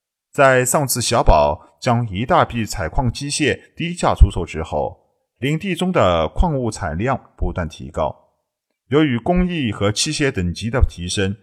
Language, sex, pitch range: Chinese, male, 95-130 Hz